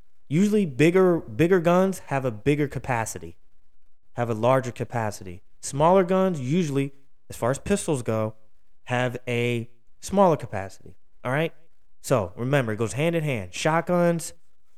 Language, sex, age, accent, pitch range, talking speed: English, male, 20-39, American, 120-150 Hz, 135 wpm